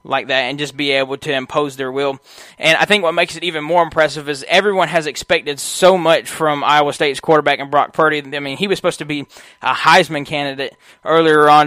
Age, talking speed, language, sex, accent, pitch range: 20-39, 225 wpm, English, male, American, 140-160 Hz